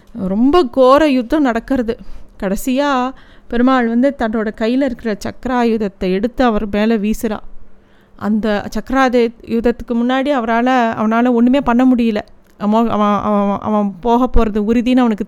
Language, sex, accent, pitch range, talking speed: Tamil, female, native, 210-245 Hz, 120 wpm